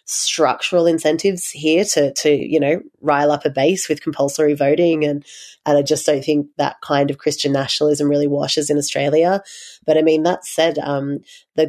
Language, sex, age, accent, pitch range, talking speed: English, female, 30-49, Australian, 145-155 Hz, 185 wpm